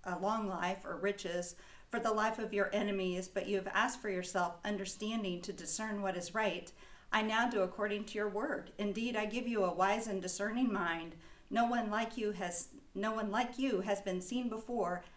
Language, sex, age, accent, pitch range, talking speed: English, female, 50-69, American, 185-215 Hz, 205 wpm